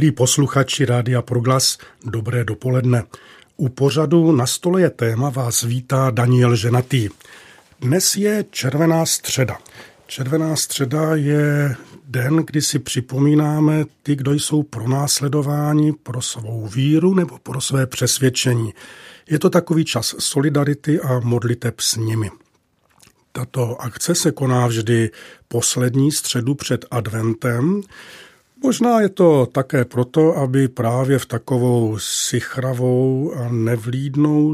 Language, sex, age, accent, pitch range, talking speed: Czech, male, 40-59, native, 120-150 Hz, 115 wpm